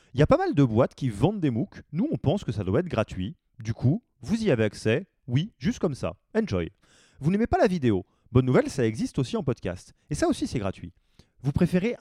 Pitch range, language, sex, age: 105-145 Hz, French, male, 30-49